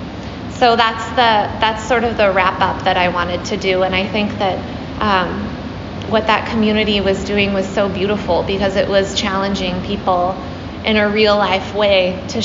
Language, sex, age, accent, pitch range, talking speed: English, female, 20-39, American, 200-230 Hz, 175 wpm